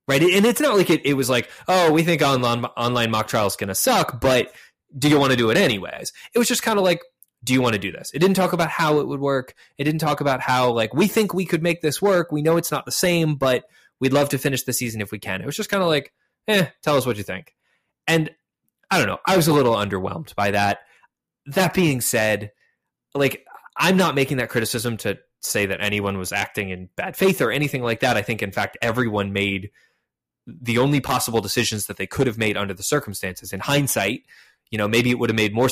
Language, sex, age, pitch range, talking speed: English, male, 20-39, 105-150 Hz, 250 wpm